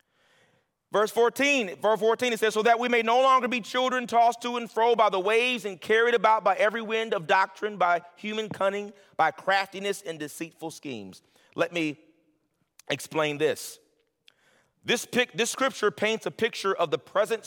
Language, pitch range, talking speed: English, 130-220 Hz, 170 wpm